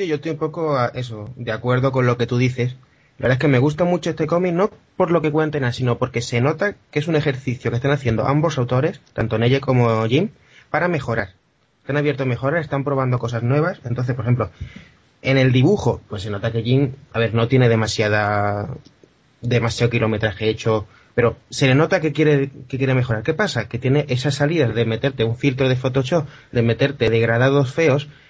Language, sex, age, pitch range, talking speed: Spanish, male, 30-49, 115-145 Hz, 210 wpm